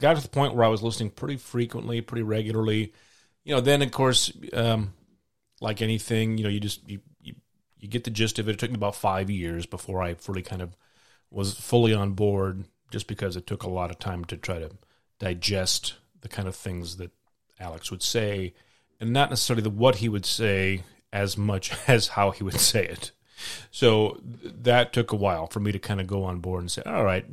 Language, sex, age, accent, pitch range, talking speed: English, male, 30-49, American, 95-115 Hz, 225 wpm